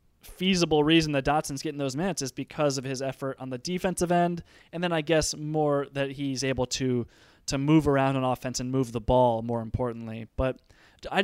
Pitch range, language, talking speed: 125-150 Hz, English, 205 wpm